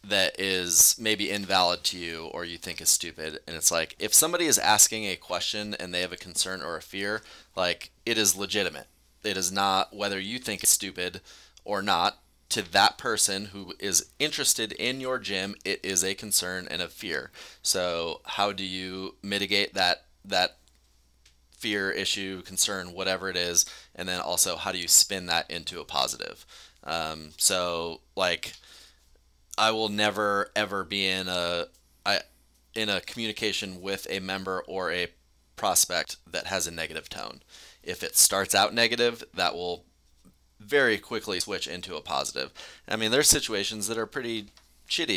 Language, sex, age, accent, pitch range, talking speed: English, male, 20-39, American, 85-100 Hz, 170 wpm